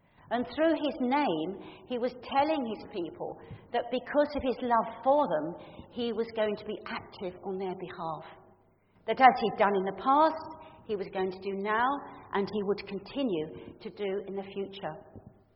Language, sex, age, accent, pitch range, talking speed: English, female, 50-69, British, 195-255 Hz, 180 wpm